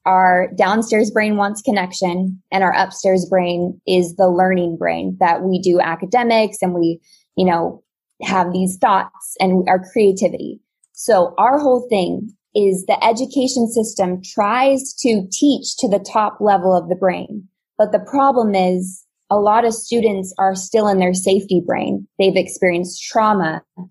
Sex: female